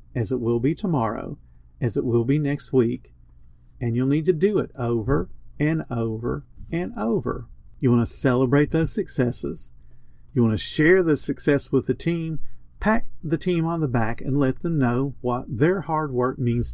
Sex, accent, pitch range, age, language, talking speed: male, American, 125-155 Hz, 50-69, English, 185 wpm